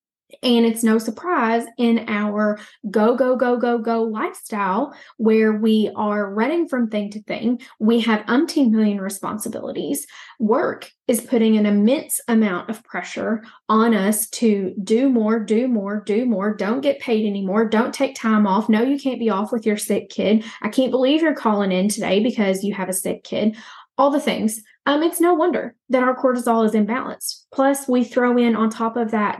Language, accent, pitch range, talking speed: English, American, 215-245 Hz, 190 wpm